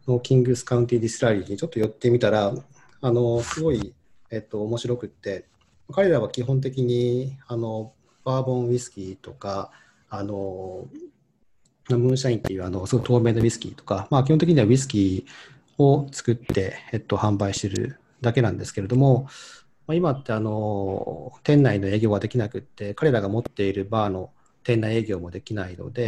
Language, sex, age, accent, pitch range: English, male, 40-59, Japanese, 100-130 Hz